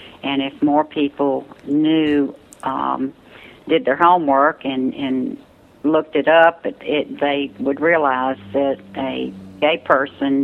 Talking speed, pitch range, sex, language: 120 wpm, 135-160 Hz, female, English